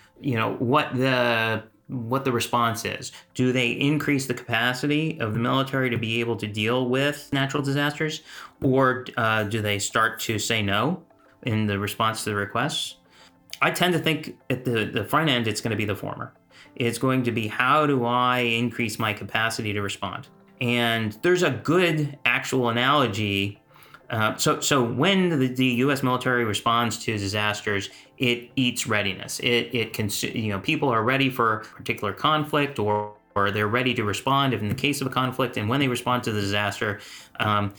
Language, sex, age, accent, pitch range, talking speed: English, male, 30-49, American, 105-130 Hz, 190 wpm